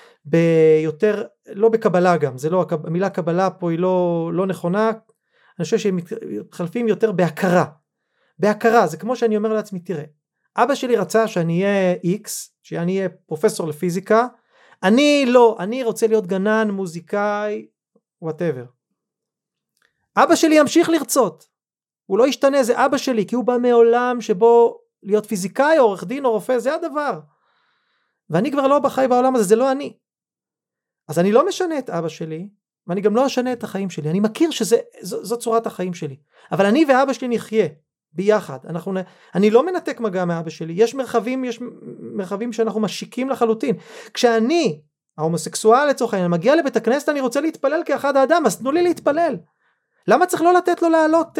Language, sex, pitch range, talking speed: Hebrew, male, 185-265 Hz, 165 wpm